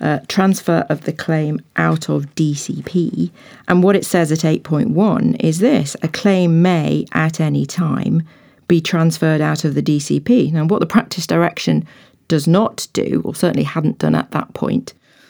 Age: 40-59